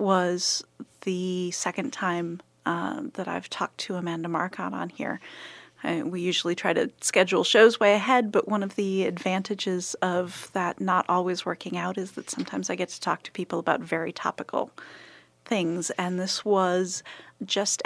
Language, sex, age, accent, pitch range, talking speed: English, female, 30-49, American, 175-195 Hz, 165 wpm